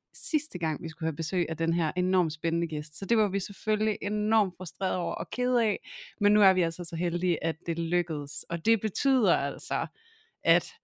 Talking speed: 210 wpm